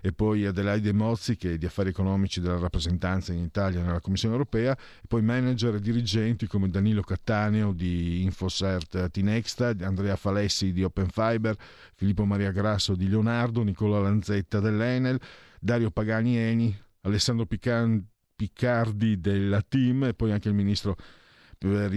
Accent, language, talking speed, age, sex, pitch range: native, Italian, 145 wpm, 50-69, male, 95-115 Hz